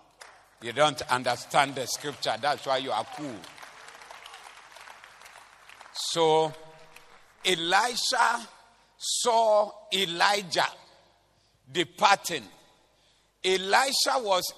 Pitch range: 135-210 Hz